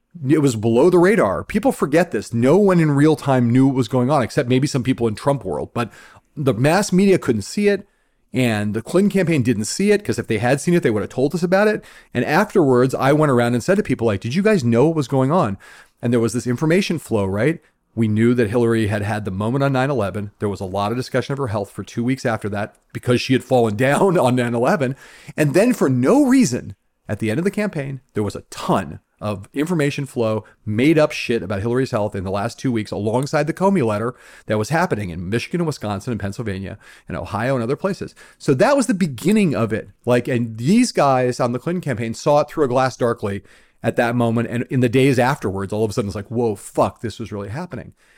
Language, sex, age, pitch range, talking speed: English, male, 40-59, 115-155 Hz, 245 wpm